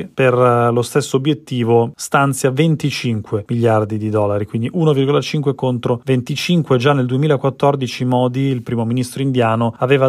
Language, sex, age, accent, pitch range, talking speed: Italian, male, 30-49, native, 115-140 Hz, 130 wpm